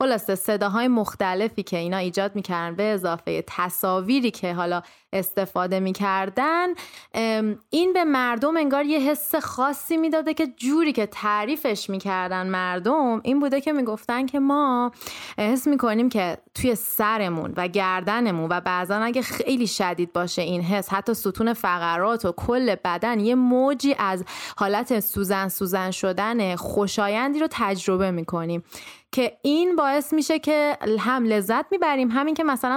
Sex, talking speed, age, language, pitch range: female, 145 wpm, 30-49, Persian, 195-270 Hz